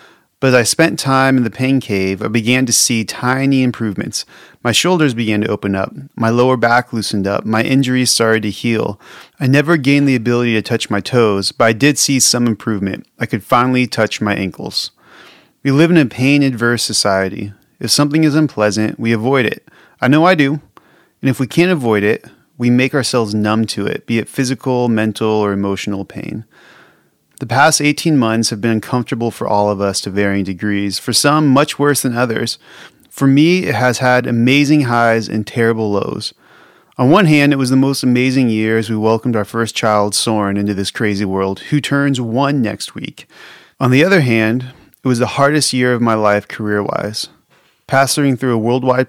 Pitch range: 110-135 Hz